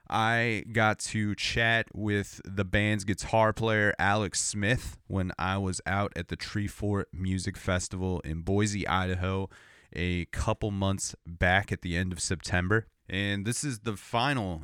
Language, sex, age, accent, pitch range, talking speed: English, male, 30-49, American, 90-105 Hz, 155 wpm